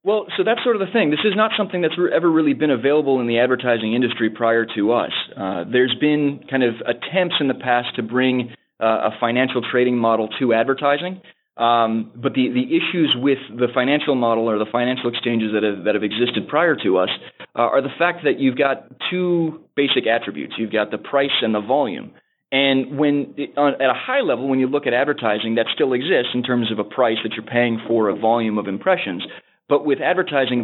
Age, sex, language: 20-39, male, English